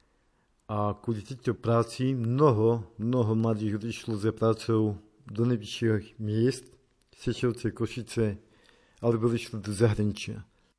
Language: Slovak